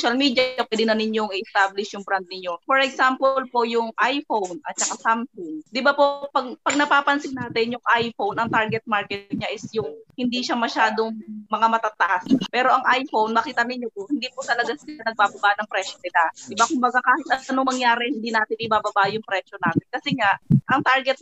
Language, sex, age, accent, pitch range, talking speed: Filipino, female, 20-39, native, 210-250 Hz, 190 wpm